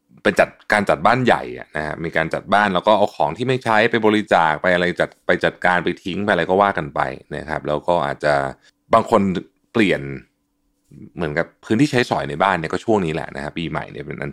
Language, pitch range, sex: Thai, 75-110 Hz, male